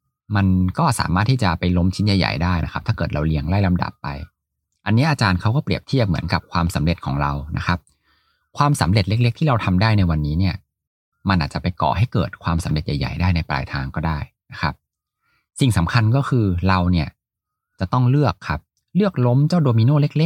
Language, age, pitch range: Thai, 20-39, 85-115 Hz